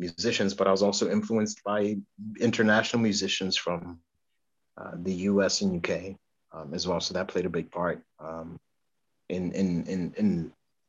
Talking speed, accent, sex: 160 wpm, American, male